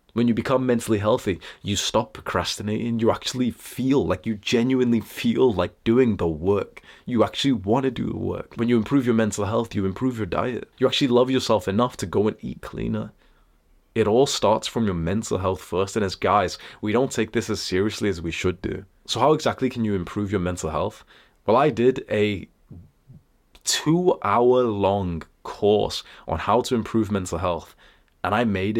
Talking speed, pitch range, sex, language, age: 190 wpm, 90-115 Hz, male, English, 20-39